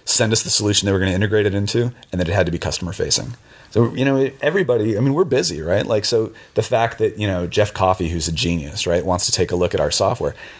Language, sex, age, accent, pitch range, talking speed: English, male, 30-49, American, 90-115 Hz, 275 wpm